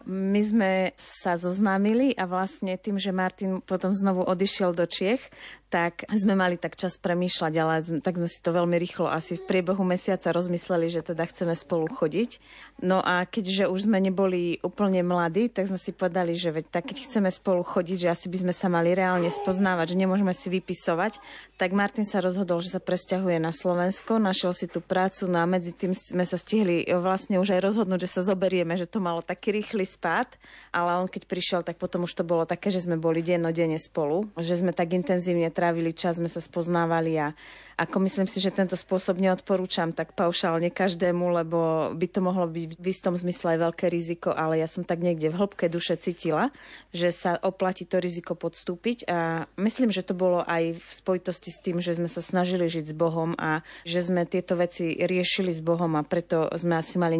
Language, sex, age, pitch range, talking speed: Slovak, female, 30-49, 170-190 Hz, 200 wpm